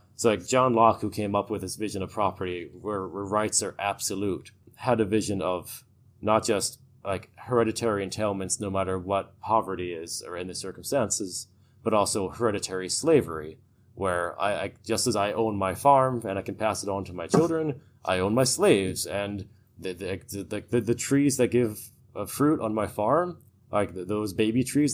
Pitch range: 100-120 Hz